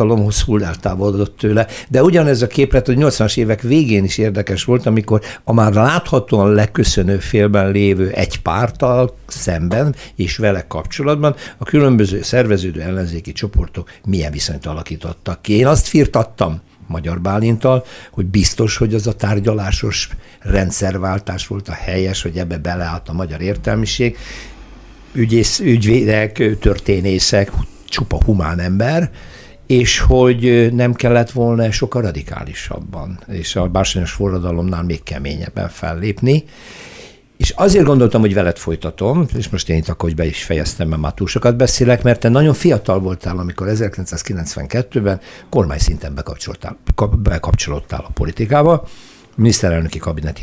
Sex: male